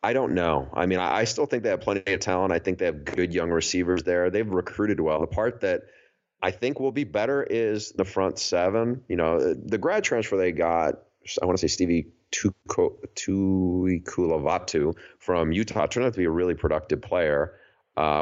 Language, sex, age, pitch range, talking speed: English, male, 30-49, 75-95 Hz, 200 wpm